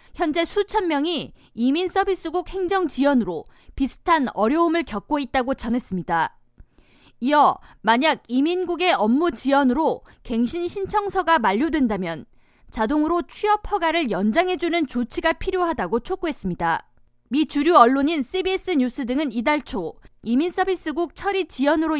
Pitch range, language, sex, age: 250-345 Hz, Korean, female, 20-39